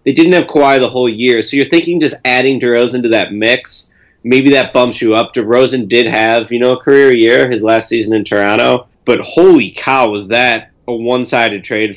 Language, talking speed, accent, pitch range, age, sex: English, 215 wpm, American, 115-165 Hz, 30-49, male